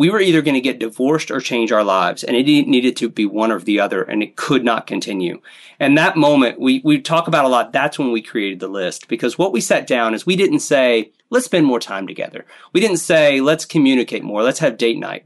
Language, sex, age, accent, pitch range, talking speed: English, male, 30-49, American, 115-165 Hz, 250 wpm